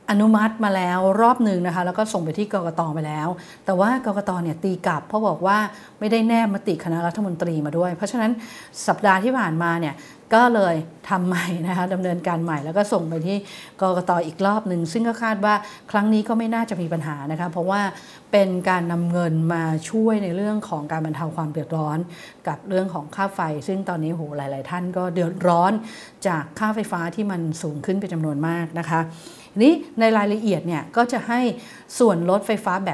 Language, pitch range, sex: English, 165-210 Hz, female